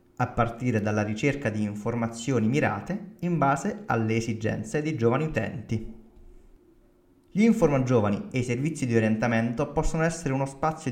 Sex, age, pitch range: male, 20-39, 110-155 Hz